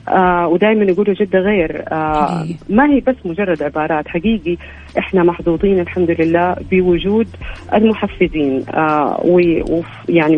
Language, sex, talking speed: Arabic, female, 115 wpm